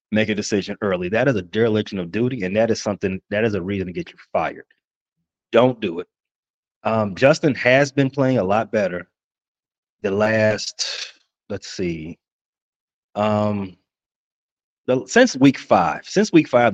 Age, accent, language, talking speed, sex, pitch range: 30-49, American, English, 160 wpm, male, 100-125 Hz